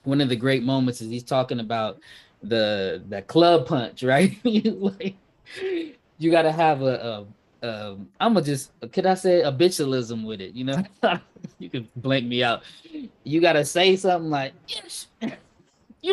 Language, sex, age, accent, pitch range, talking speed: English, male, 20-39, American, 115-170 Hz, 170 wpm